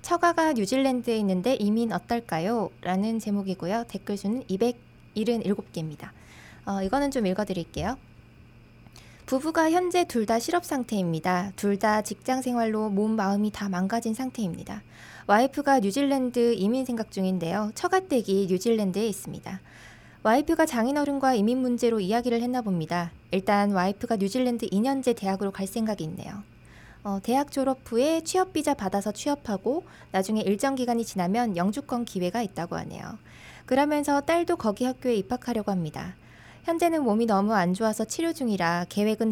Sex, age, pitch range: female, 20-39, 195-260 Hz